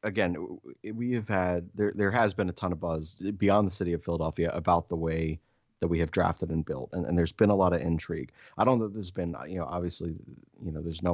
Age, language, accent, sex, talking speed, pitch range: 30-49, English, American, male, 255 wpm, 85-100 Hz